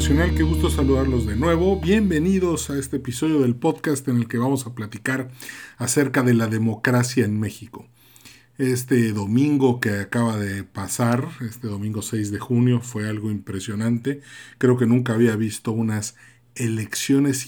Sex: male